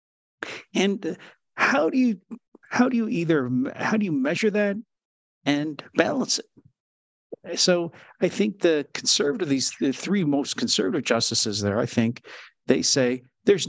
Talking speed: 145 wpm